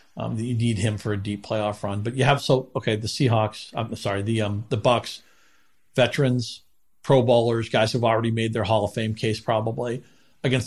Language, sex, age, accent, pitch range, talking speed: English, male, 40-59, American, 110-130 Hz, 200 wpm